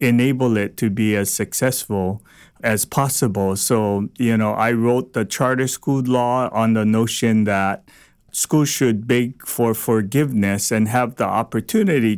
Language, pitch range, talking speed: English, 115-145 Hz, 150 wpm